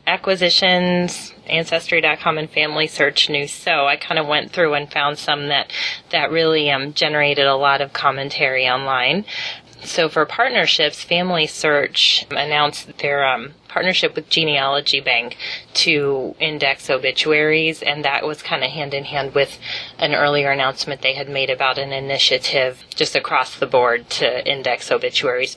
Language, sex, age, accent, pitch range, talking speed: English, female, 30-49, American, 135-155 Hz, 145 wpm